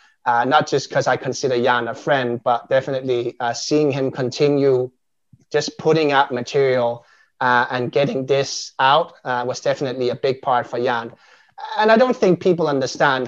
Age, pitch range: 30-49, 130-155 Hz